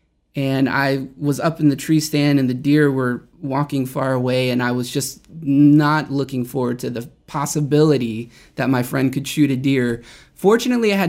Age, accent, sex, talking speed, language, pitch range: 20-39, American, male, 190 wpm, English, 135-190 Hz